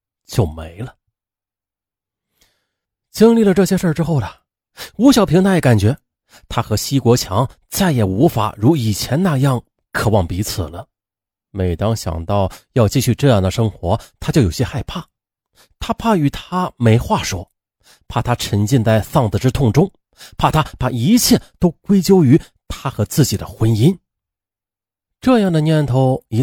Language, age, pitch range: Chinese, 30-49, 100-155 Hz